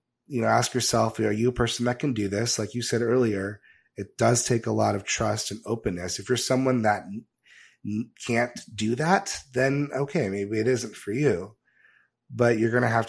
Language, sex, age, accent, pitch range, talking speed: English, male, 30-49, American, 100-120 Hz, 200 wpm